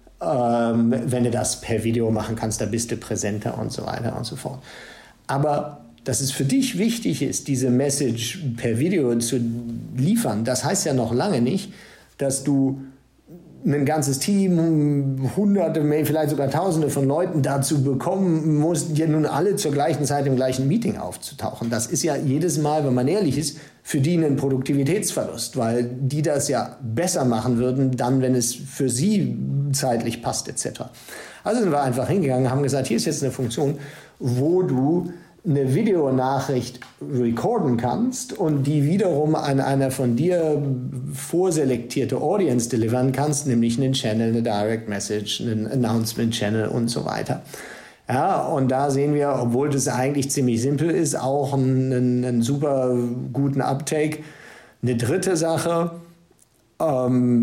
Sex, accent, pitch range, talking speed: male, German, 120-150 Hz, 160 wpm